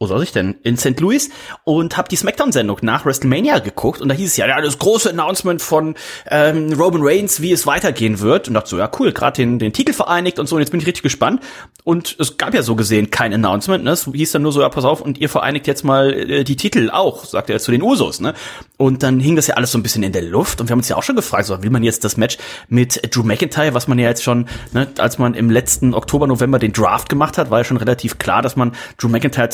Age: 30-49